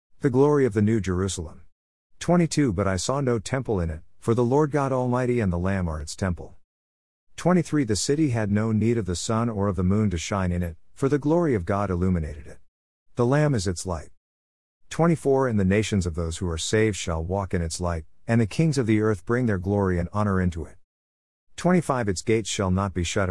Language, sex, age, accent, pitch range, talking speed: English, male, 50-69, American, 85-120 Hz, 225 wpm